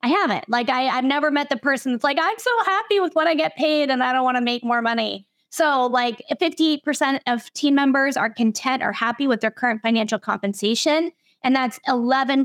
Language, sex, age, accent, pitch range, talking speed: English, female, 20-39, American, 215-265 Hz, 210 wpm